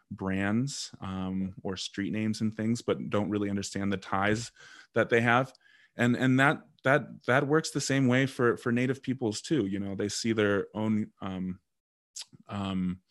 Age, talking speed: 20-39, 175 wpm